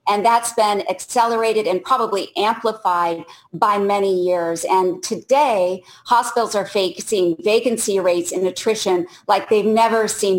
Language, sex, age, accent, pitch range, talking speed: English, female, 40-59, American, 185-225 Hz, 135 wpm